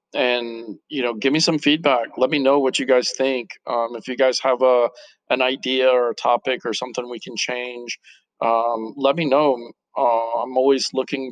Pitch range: 115-130 Hz